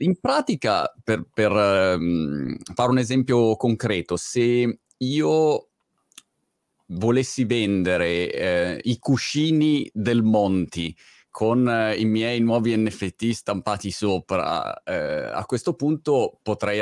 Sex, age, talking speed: male, 30-49, 110 wpm